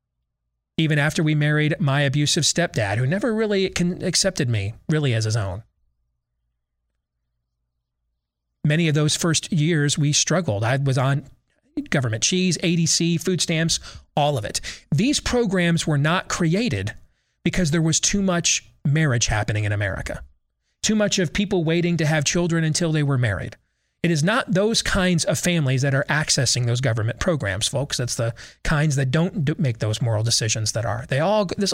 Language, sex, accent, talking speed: English, male, American, 165 wpm